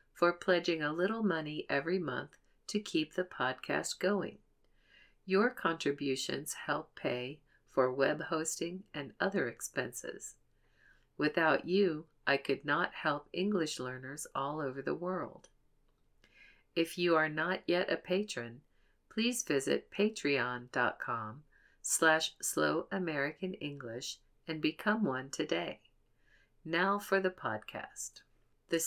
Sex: female